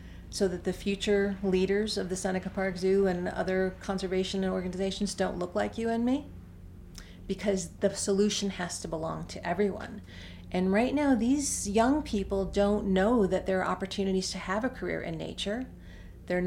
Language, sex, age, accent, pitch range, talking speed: English, female, 40-59, American, 170-205 Hz, 170 wpm